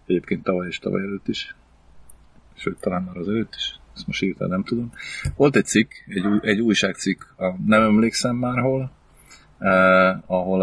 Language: Hungarian